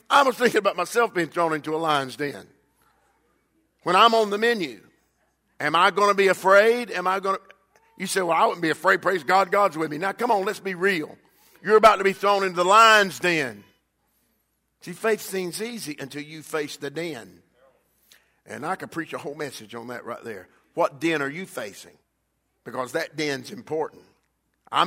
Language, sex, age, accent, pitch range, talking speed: English, male, 50-69, American, 155-205 Hz, 195 wpm